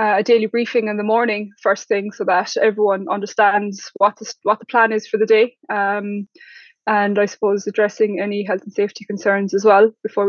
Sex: female